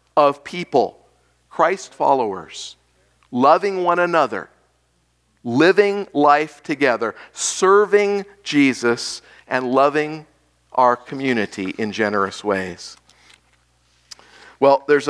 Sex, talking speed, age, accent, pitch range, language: male, 85 wpm, 50-69, American, 105-175 Hz, English